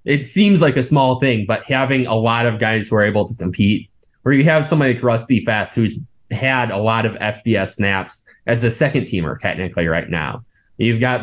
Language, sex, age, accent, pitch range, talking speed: English, male, 20-39, American, 105-130 Hz, 215 wpm